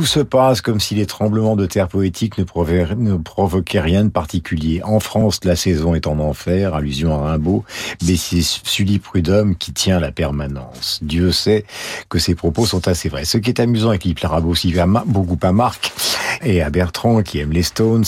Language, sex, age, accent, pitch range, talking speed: French, male, 50-69, French, 80-100 Hz, 210 wpm